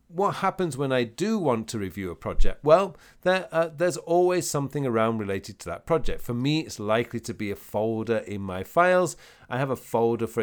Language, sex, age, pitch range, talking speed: English, male, 40-59, 105-145 Hz, 215 wpm